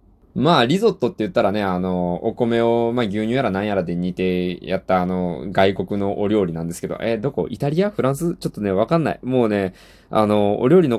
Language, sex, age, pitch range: Japanese, male, 20-39, 100-145 Hz